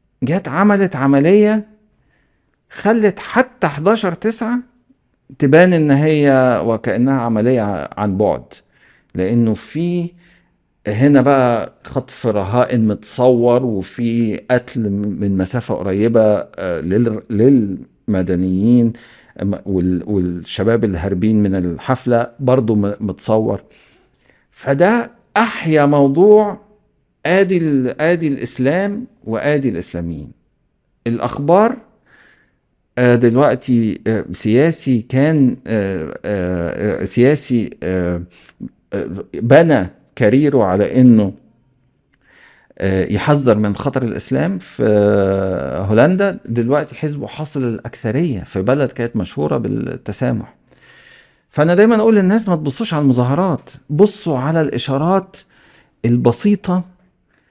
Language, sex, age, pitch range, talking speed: Arabic, male, 50-69, 105-160 Hz, 90 wpm